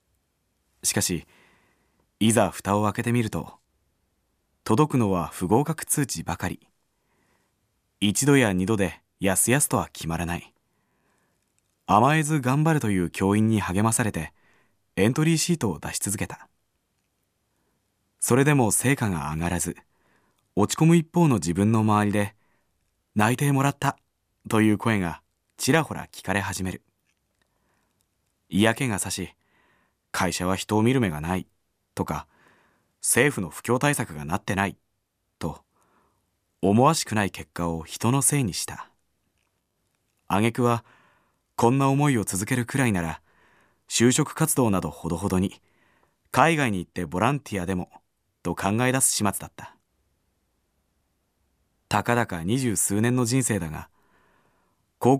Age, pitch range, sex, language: 20-39, 90-120 Hz, male, Japanese